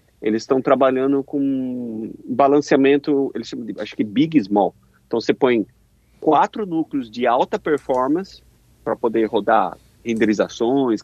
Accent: Brazilian